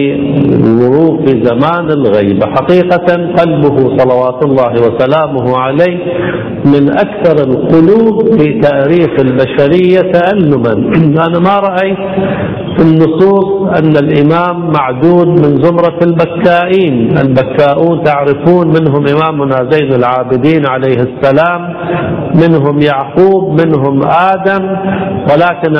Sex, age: male, 50-69